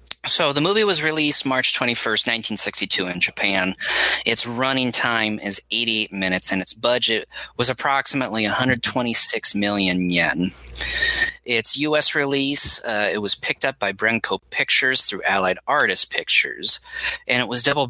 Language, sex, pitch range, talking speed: English, male, 100-125 Hz, 145 wpm